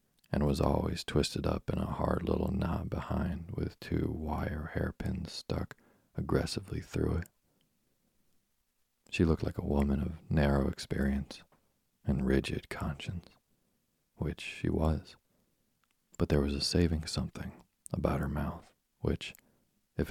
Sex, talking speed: male, 130 wpm